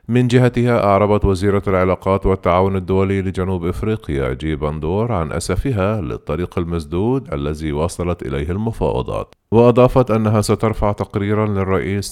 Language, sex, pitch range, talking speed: Arabic, male, 85-105 Hz, 120 wpm